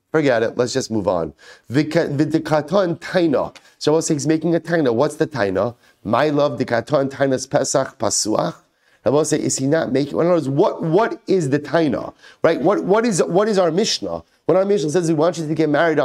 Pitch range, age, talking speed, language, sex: 135-170 Hz, 30-49, 215 wpm, English, male